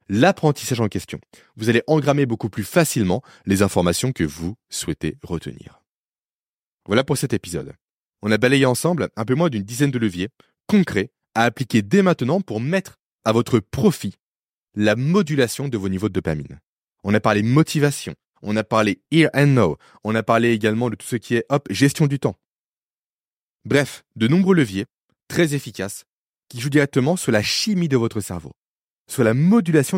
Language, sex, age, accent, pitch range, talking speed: French, male, 20-39, French, 105-145 Hz, 175 wpm